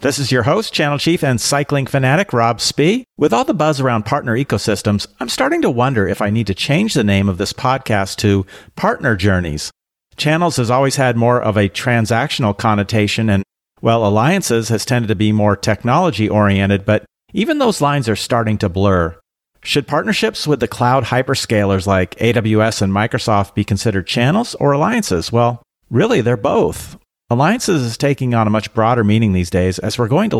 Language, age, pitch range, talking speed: English, 50-69, 100-130 Hz, 190 wpm